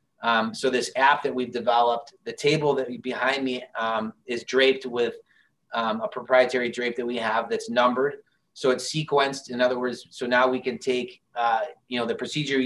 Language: English